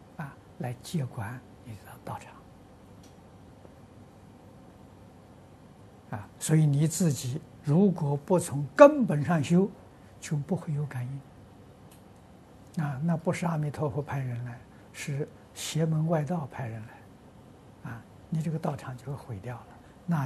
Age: 60-79